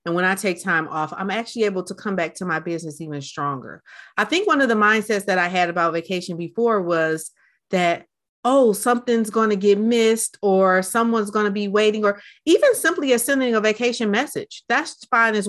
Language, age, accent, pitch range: English, 30-49, American, 180-230 Hz